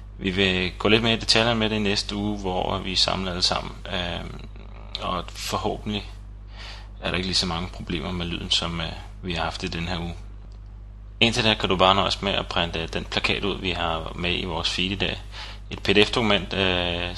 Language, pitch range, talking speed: Danish, 90-105 Hz, 205 wpm